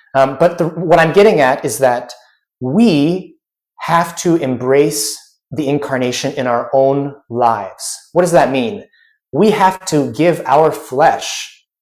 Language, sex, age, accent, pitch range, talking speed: English, male, 30-49, American, 130-175 Hz, 140 wpm